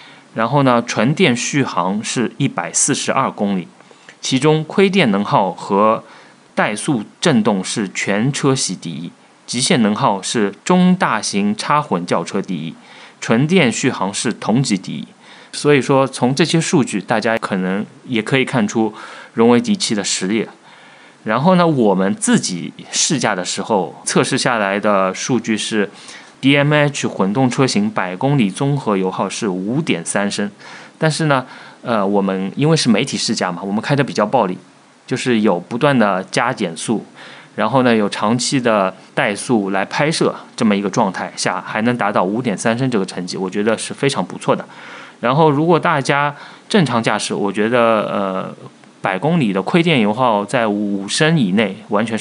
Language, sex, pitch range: Chinese, male, 100-145 Hz